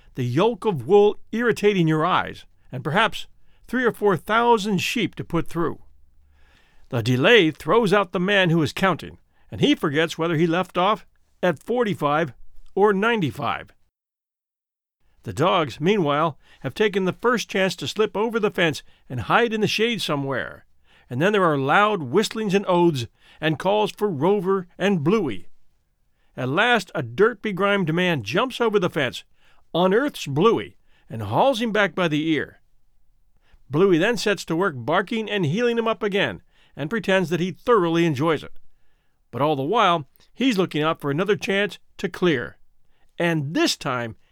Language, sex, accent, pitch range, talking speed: English, male, American, 155-210 Hz, 165 wpm